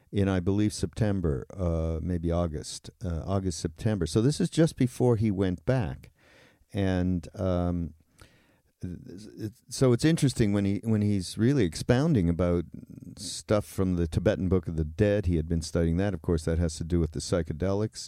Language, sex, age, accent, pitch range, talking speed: English, male, 50-69, American, 85-110 Hz, 180 wpm